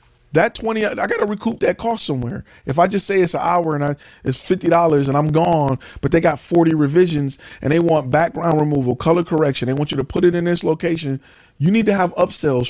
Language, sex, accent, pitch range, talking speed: English, male, American, 120-170 Hz, 230 wpm